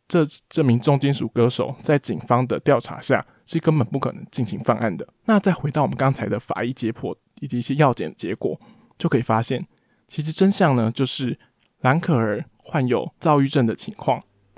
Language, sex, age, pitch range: Chinese, male, 20-39, 120-150 Hz